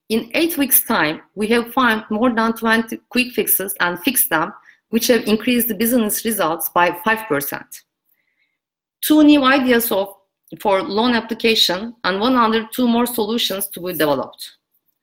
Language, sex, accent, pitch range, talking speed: English, female, Turkish, 205-255 Hz, 155 wpm